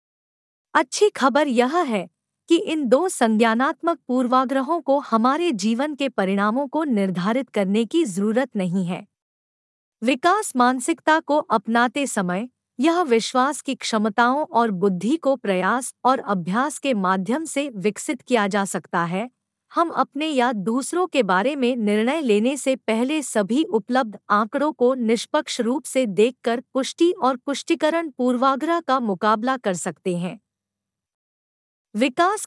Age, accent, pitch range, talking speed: 50-69, native, 215-295 Hz, 135 wpm